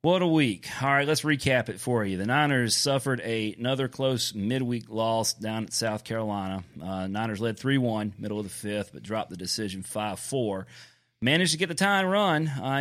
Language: English